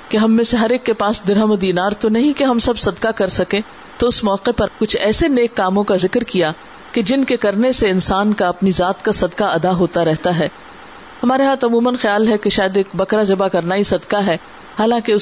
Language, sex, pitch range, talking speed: Urdu, female, 195-255 Hz, 235 wpm